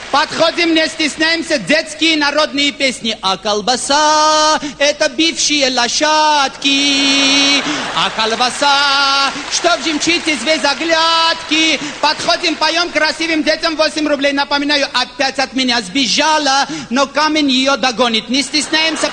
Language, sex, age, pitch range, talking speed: Russian, male, 50-69, 270-315 Hz, 110 wpm